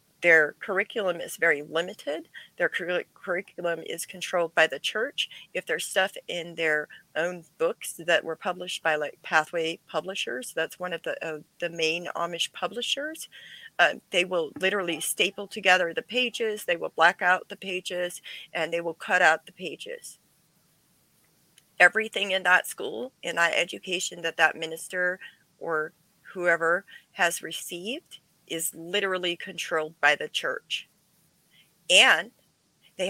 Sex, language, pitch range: female, English, 165-200 Hz